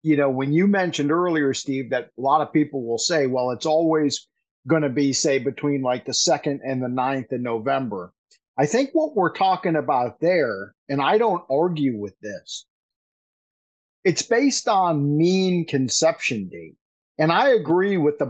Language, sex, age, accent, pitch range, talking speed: English, male, 50-69, American, 130-165 Hz, 175 wpm